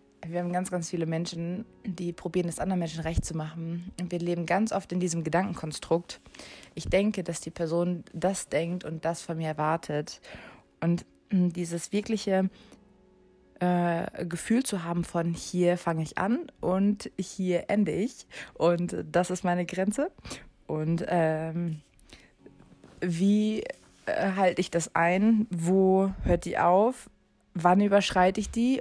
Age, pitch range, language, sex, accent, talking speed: 20-39, 170-195 Hz, German, female, German, 145 wpm